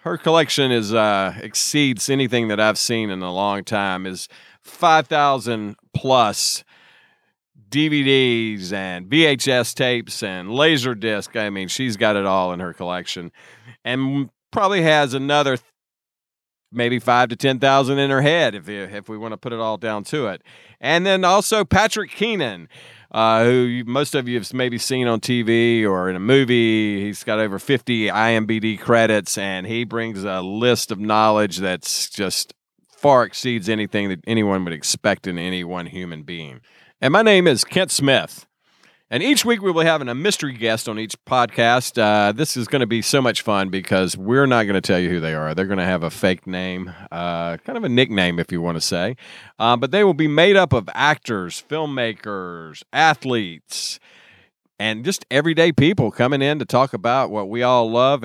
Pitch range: 100-135 Hz